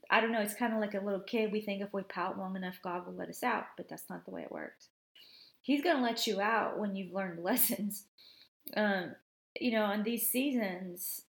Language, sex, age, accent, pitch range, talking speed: English, female, 30-49, American, 195-230 Hz, 240 wpm